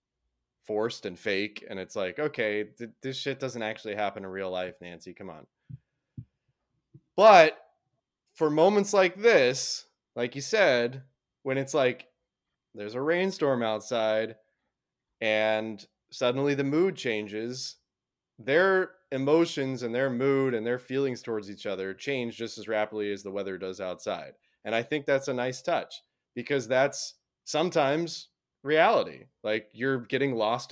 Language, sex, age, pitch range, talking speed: English, male, 20-39, 105-150 Hz, 145 wpm